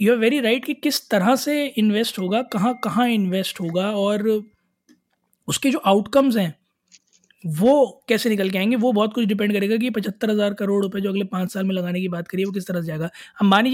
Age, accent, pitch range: 20-39, native, 180-210 Hz